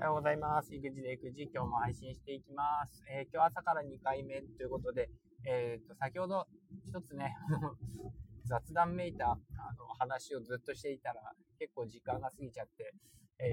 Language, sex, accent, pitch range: Japanese, male, native, 120-170 Hz